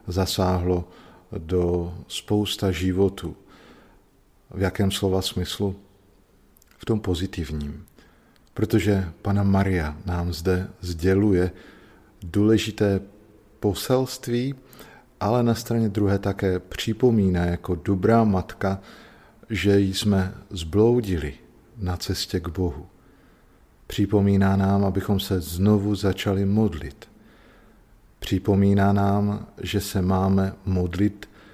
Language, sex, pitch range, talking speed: Slovak, male, 90-105 Hz, 90 wpm